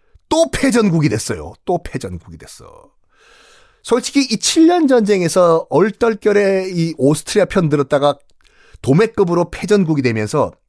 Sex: male